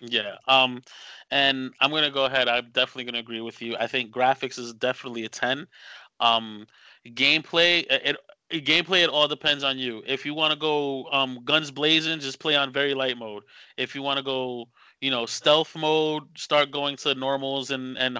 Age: 20-39